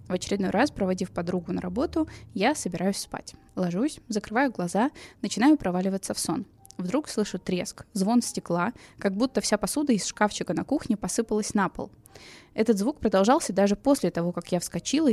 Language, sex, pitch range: Russian, female, 180-240 Hz